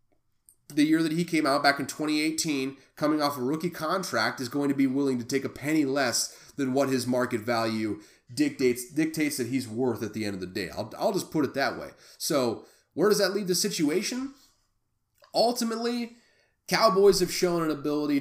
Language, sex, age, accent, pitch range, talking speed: English, male, 30-49, American, 115-155 Hz, 200 wpm